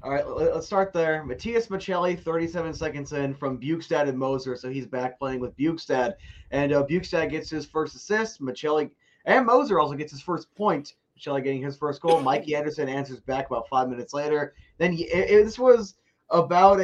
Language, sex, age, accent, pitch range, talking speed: English, male, 20-39, American, 140-180 Hz, 180 wpm